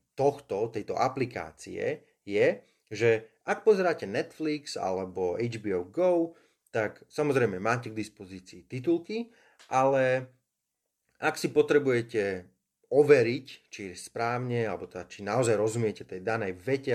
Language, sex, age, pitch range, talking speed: Slovak, male, 30-49, 95-140 Hz, 115 wpm